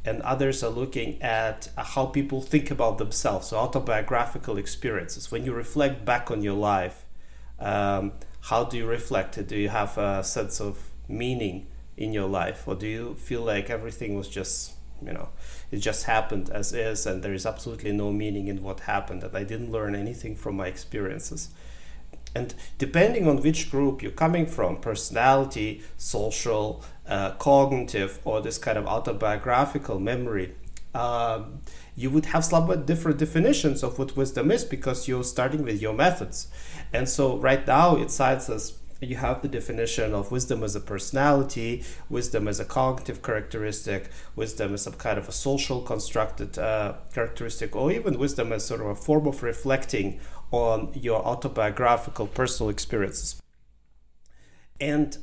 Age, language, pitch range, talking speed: 30-49, Russian, 100-135 Hz, 165 wpm